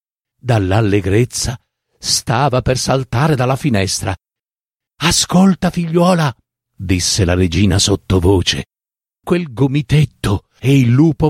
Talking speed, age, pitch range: 90 wpm, 50-69, 115-165 Hz